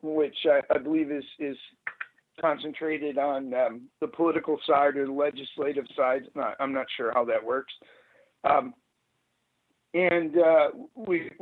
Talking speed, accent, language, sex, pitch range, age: 135 wpm, American, English, male, 140-170 Hz, 50-69